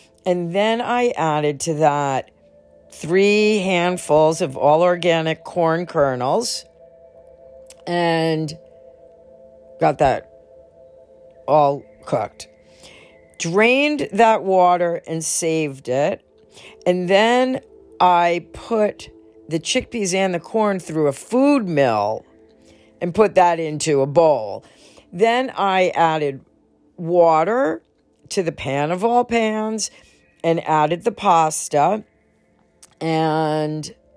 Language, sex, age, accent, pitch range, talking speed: English, female, 50-69, American, 145-205 Hz, 100 wpm